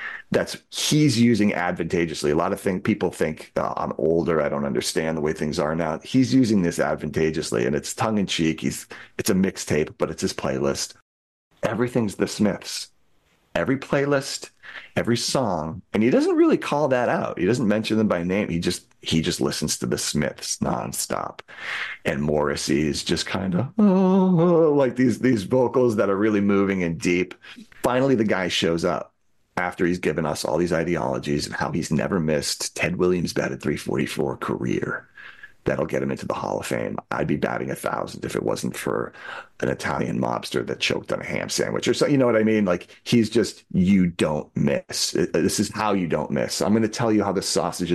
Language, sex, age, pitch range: English, male, 40-59, 85-120 Hz